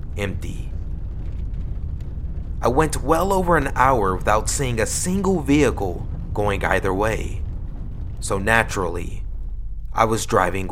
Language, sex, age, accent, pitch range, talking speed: English, male, 30-49, American, 80-135 Hz, 110 wpm